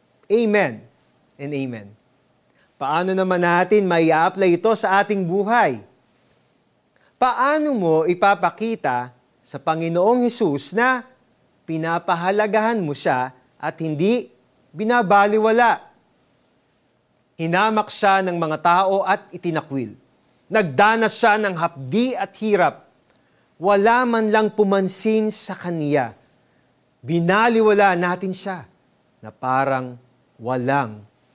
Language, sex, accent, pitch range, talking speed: Filipino, male, native, 140-210 Hz, 95 wpm